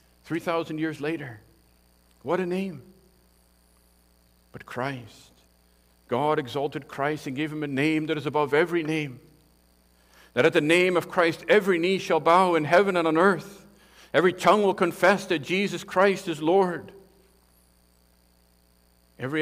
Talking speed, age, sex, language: 140 wpm, 50-69, male, English